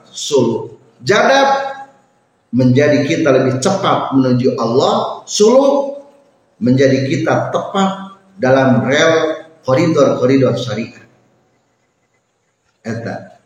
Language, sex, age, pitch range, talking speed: Indonesian, male, 40-59, 135-215 Hz, 75 wpm